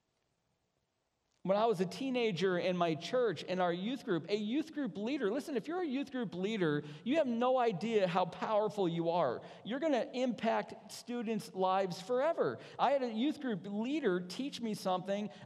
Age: 40-59